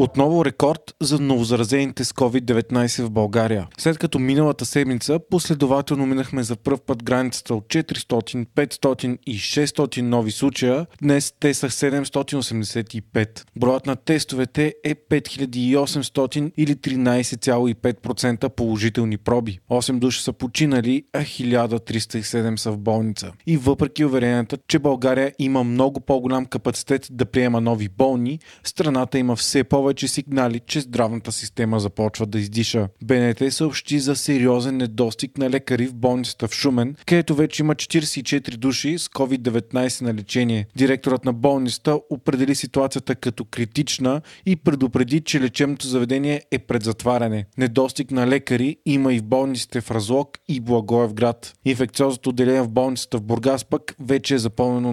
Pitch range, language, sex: 120-140 Hz, Russian, male